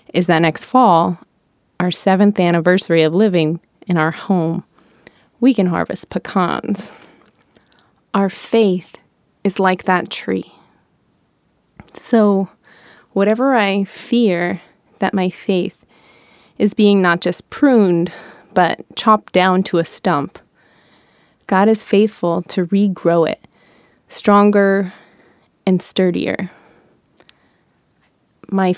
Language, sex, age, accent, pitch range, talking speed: English, female, 20-39, American, 175-200 Hz, 105 wpm